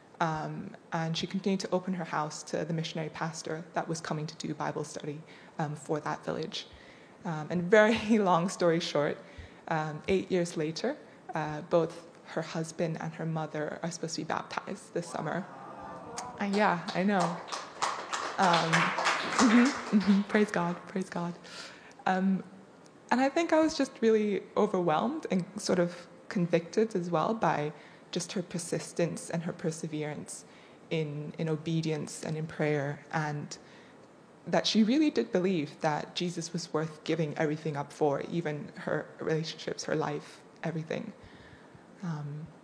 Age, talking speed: 20-39, 150 wpm